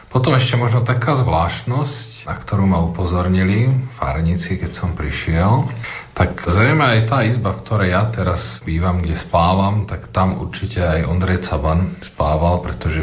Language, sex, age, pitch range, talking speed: Slovak, male, 40-59, 80-105 Hz, 150 wpm